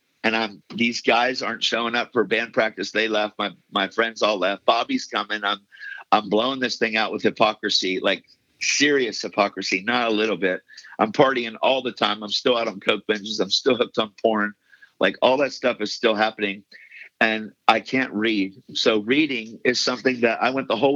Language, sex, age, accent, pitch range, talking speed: English, male, 50-69, American, 105-125 Hz, 200 wpm